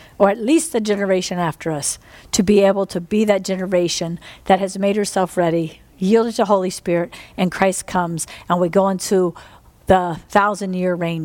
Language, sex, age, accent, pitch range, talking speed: English, female, 50-69, American, 185-235 Hz, 180 wpm